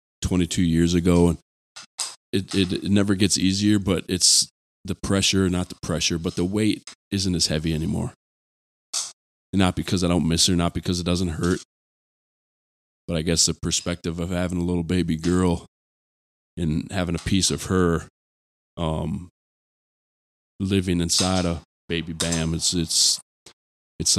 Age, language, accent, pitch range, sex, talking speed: 20-39, English, American, 80-90 Hz, male, 150 wpm